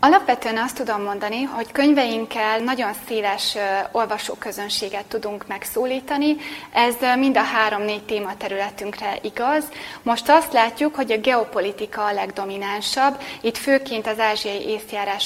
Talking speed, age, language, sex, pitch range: 120 wpm, 20-39, Hungarian, female, 205-245 Hz